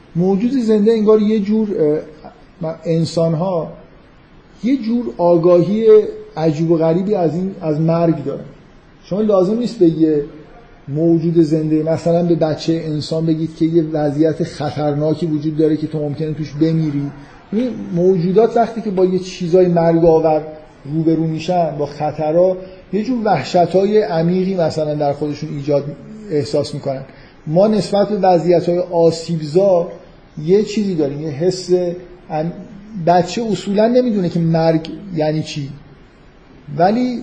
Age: 50-69